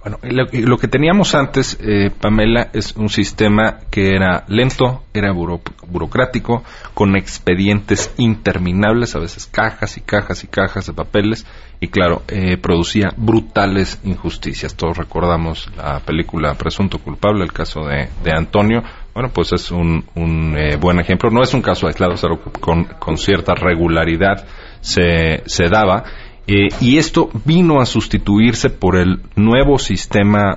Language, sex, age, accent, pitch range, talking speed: Spanish, male, 40-59, Mexican, 85-115 Hz, 145 wpm